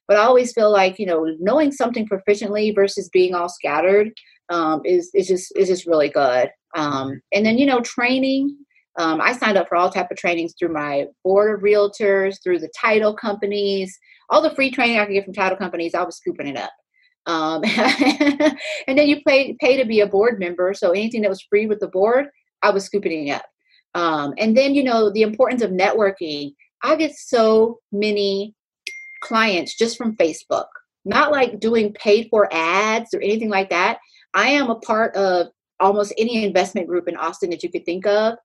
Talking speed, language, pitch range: 200 wpm, English, 190-255 Hz